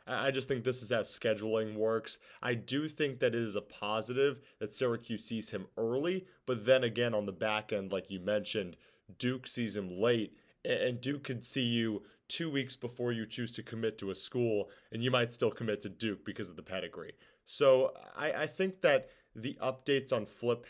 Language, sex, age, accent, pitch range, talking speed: English, male, 20-39, American, 110-135 Hz, 205 wpm